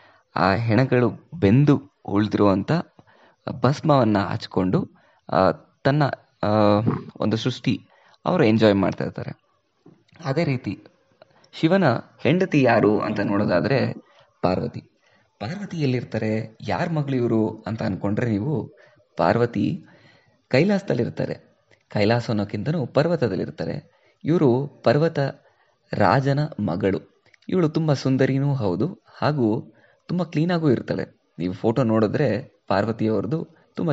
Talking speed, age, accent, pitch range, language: 90 wpm, 20-39, native, 105-145 Hz, Kannada